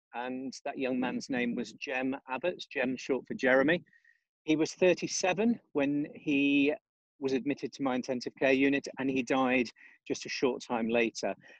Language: English